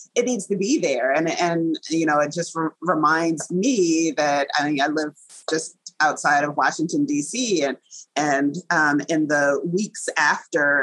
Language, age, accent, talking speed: English, 30-49, American, 170 wpm